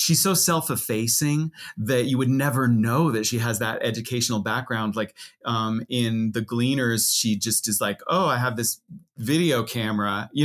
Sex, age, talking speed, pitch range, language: male, 30-49, 170 wpm, 105-135 Hz, English